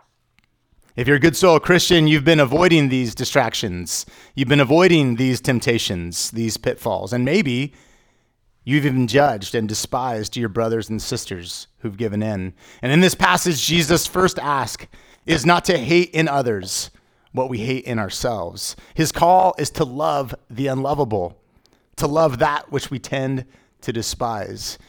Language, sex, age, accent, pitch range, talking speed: English, male, 30-49, American, 110-150 Hz, 155 wpm